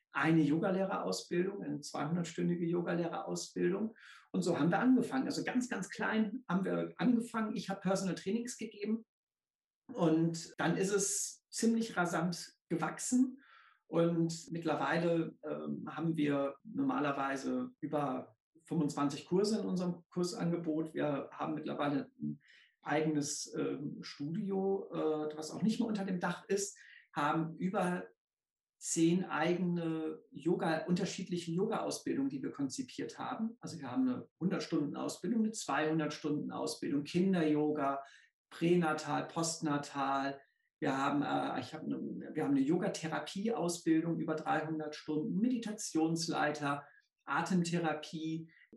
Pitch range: 155-200 Hz